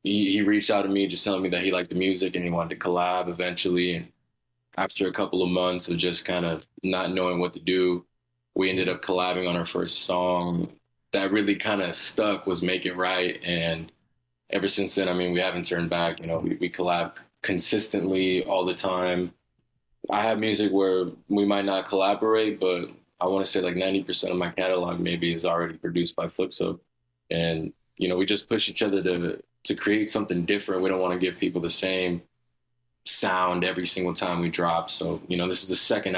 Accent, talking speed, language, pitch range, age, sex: American, 215 wpm, English, 85-95 Hz, 20-39, male